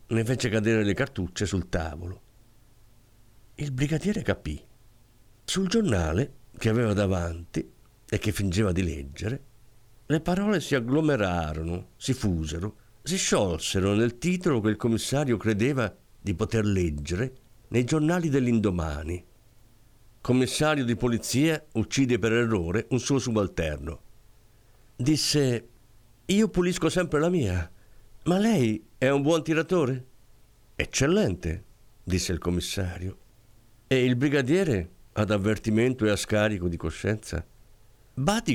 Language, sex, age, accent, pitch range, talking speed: Italian, male, 50-69, native, 100-125 Hz, 120 wpm